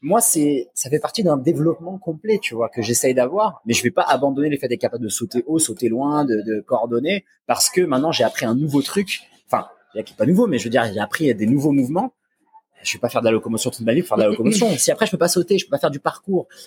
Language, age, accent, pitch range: French, 20-39, French, 115-175 Hz